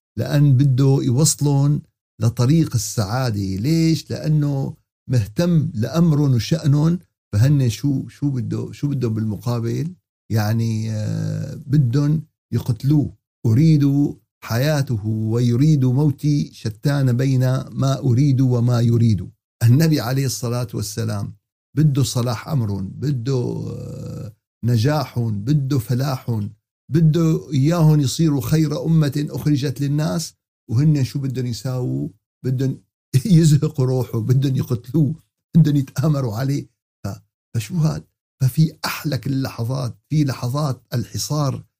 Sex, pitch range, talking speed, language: male, 115-145 Hz, 95 wpm, Arabic